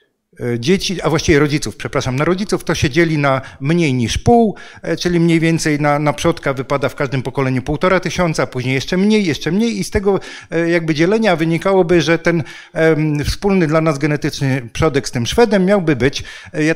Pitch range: 140-175 Hz